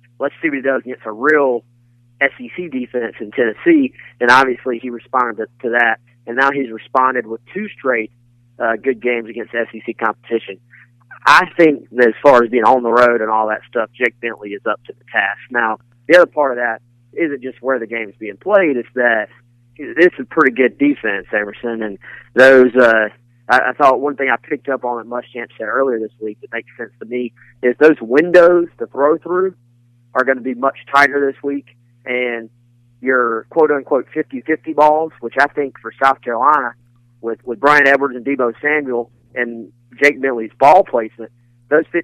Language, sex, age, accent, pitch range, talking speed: English, male, 40-59, American, 120-140 Hz, 195 wpm